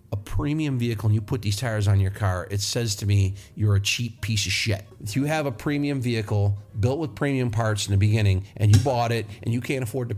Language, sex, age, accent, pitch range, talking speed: English, male, 50-69, American, 105-125 Hz, 255 wpm